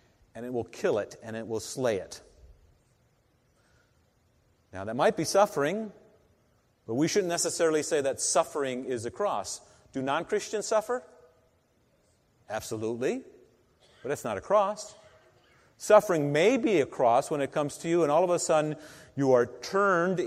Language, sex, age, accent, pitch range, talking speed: English, male, 40-59, American, 120-180 Hz, 155 wpm